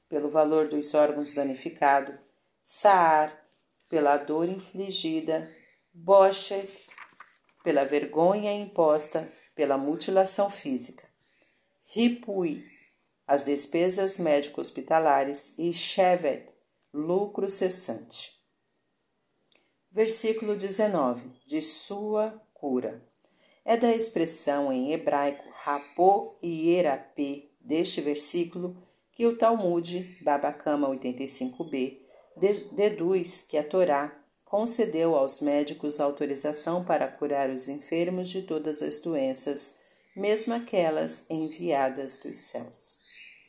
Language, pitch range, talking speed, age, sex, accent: Portuguese, 145-190 Hz, 90 wpm, 40-59, female, Brazilian